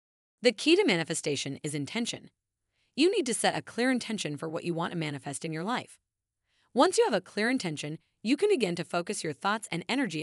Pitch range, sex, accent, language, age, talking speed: 160-245 Hz, female, American, English, 30-49, 215 wpm